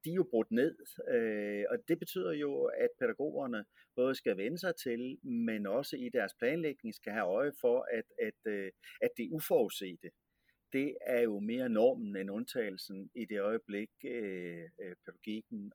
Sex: male